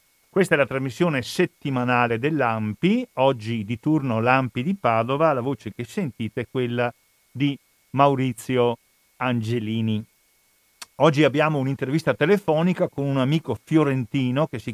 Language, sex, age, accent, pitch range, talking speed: Italian, male, 50-69, native, 120-160 Hz, 125 wpm